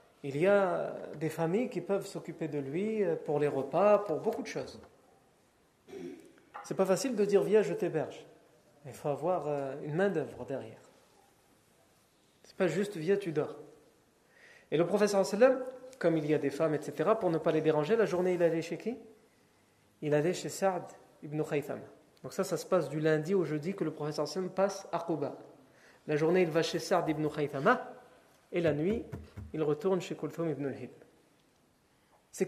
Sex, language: male, French